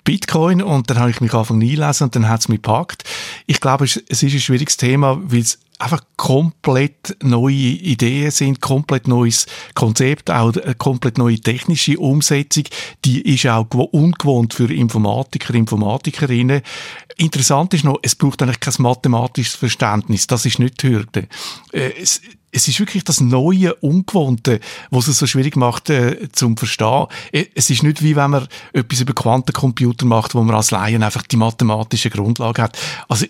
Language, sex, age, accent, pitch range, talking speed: German, male, 60-79, Austrian, 120-150 Hz, 170 wpm